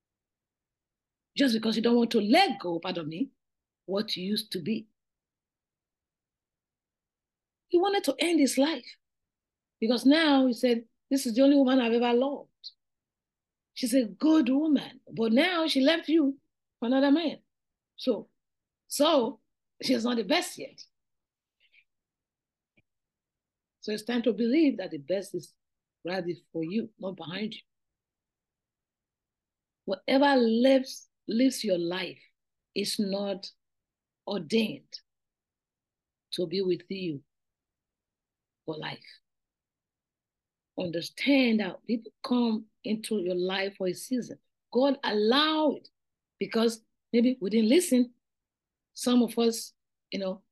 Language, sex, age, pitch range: English, female, 50-69, 195-265 Hz